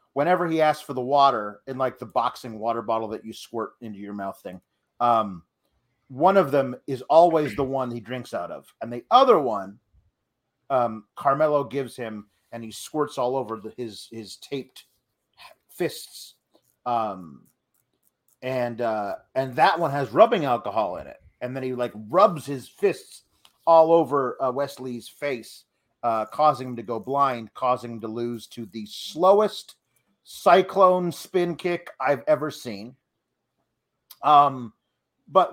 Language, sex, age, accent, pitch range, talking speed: English, male, 30-49, American, 120-180 Hz, 155 wpm